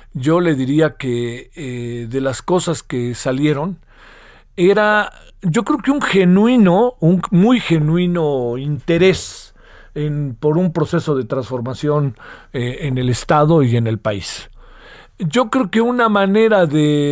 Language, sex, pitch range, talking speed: Spanish, male, 140-175 Hz, 140 wpm